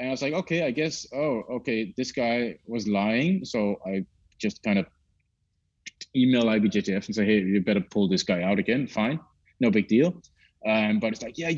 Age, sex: 30-49, male